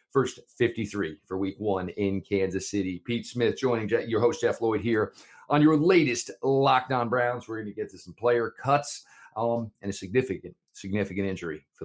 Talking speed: 180 wpm